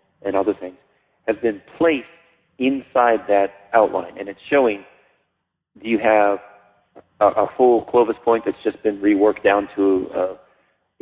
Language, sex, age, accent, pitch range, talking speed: English, male, 40-59, American, 105-155 Hz, 145 wpm